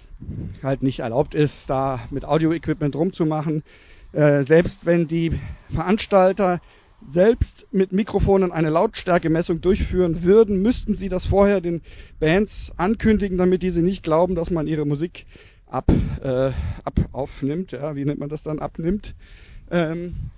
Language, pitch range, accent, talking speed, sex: German, 140-175 Hz, German, 140 wpm, male